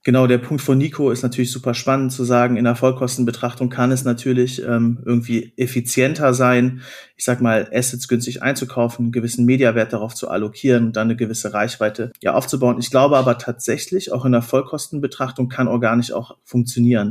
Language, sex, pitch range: German, male, 120-130 Hz